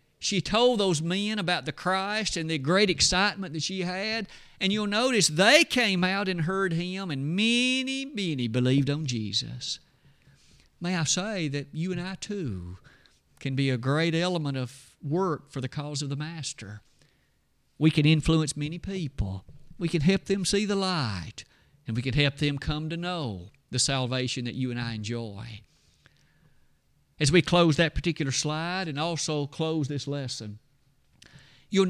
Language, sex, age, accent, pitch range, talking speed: English, male, 50-69, American, 135-180 Hz, 165 wpm